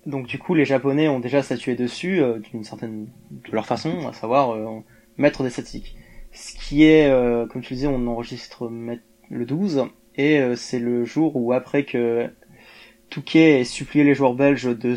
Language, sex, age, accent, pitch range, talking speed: French, male, 20-39, French, 115-140 Hz, 190 wpm